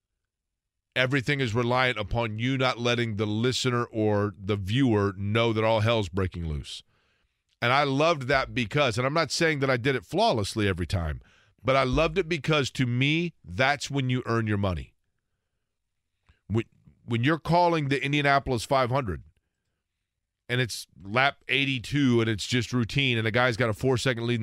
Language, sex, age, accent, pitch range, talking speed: English, male, 40-59, American, 105-135 Hz, 170 wpm